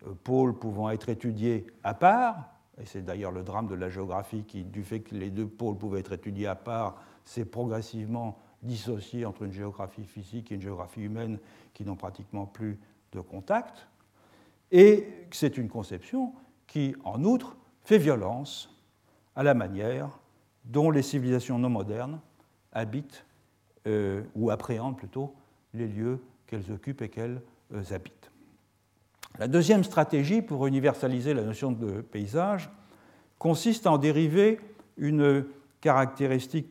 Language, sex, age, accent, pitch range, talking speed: French, male, 60-79, French, 105-145 Hz, 140 wpm